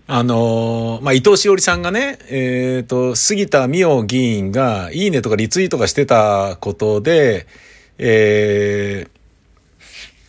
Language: Japanese